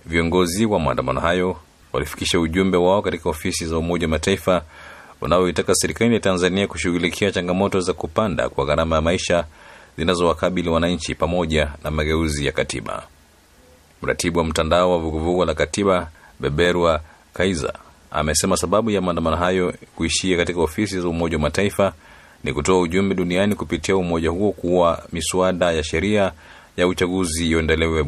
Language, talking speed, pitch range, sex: Swahili, 145 wpm, 80-95 Hz, male